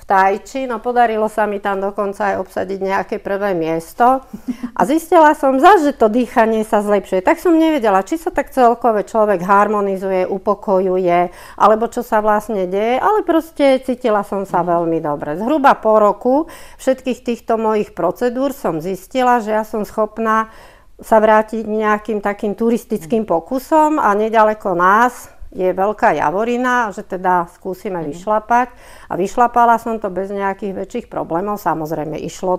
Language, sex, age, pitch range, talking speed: Slovak, female, 50-69, 190-245 Hz, 150 wpm